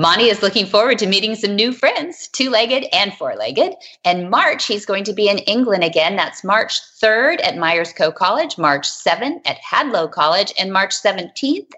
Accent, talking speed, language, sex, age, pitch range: American, 185 wpm, English, female, 30-49, 175-255 Hz